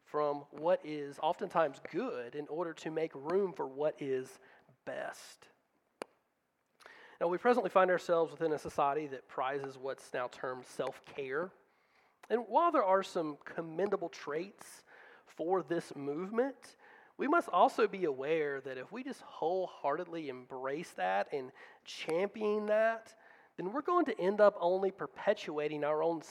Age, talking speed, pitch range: 30-49, 145 wpm, 150-215 Hz